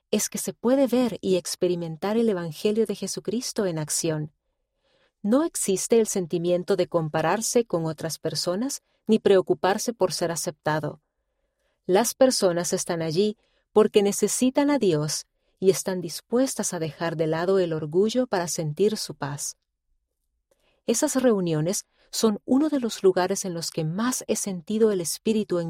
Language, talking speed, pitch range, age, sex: Spanish, 150 wpm, 170-225 Hz, 40-59, female